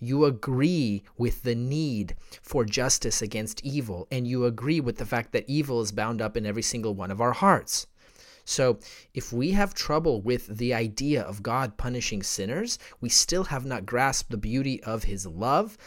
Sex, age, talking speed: male, 30-49, 185 wpm